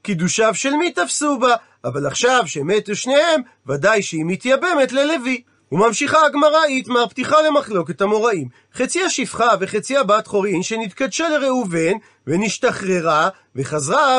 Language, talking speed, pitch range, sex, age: Hebrew, 115 wpm, 205-270 Hz, male, 40-59